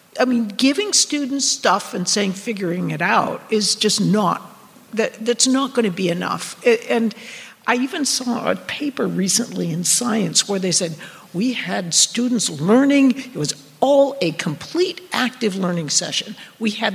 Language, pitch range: English, 200-255 Hz